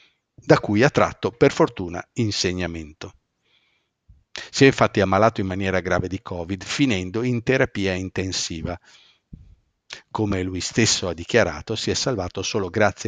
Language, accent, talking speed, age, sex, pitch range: Italian, native, 140 wpm, 50-69, male, 95-125 Hz